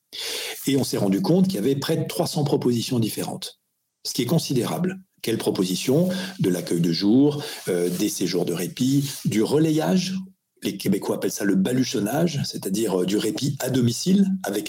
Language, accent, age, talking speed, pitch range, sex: French, French, 50-69, 175 wpm, 105-155 Hz, male